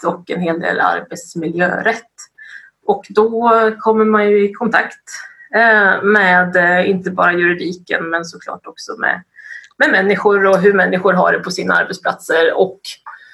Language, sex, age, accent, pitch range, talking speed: Swedish, female, 30-49, native, 180-220 Hz, 140 wpm